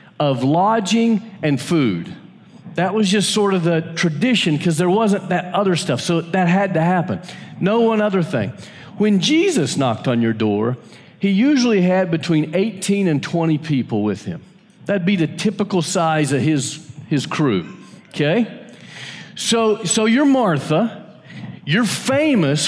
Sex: male